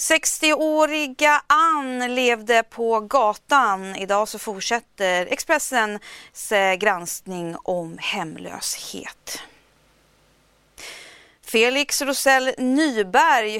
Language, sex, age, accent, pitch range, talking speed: Swedish, female, 30-49, native, 205-255 Hz, 65 wpm